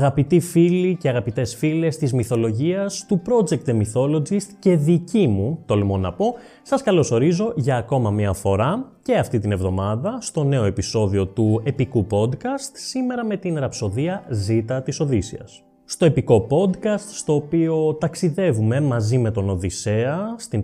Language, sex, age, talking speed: Greek, male, 20-39, 150 wpm